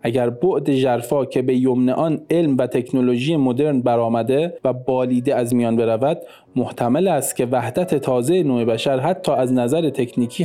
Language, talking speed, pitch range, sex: Persian, 160 wpm, 125-155 Hz, male